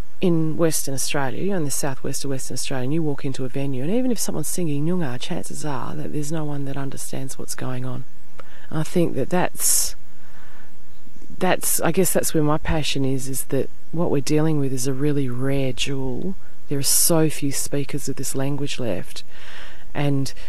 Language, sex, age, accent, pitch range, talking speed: English, female, 30-49, Australian, 135-175 Hz, 195 wpm